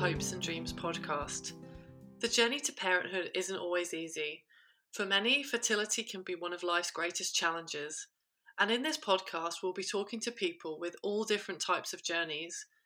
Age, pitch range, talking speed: 30-49, 165-210 Hz, 170 wpm